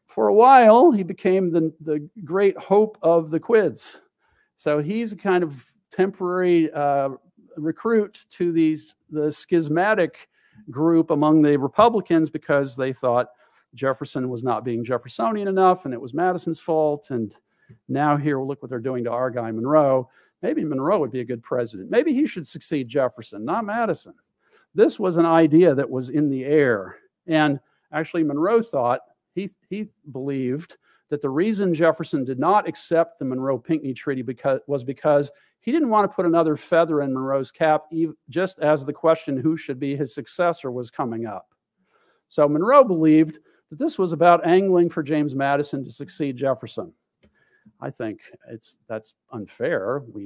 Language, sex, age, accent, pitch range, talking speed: English, male, 50-69, American, 130-170 Hz, 165 wpm